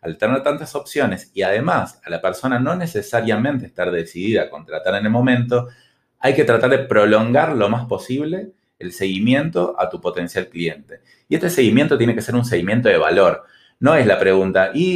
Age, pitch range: 20-39, 95-135 Hz